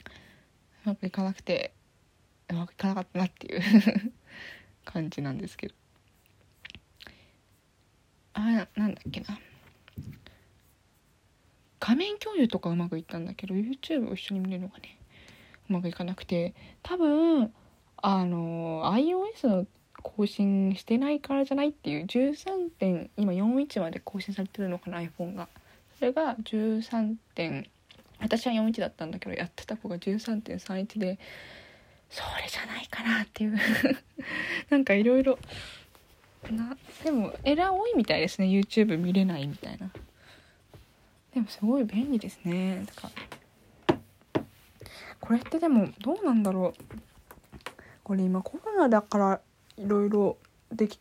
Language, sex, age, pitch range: Japanese, female, 20-39, 185-255 Hz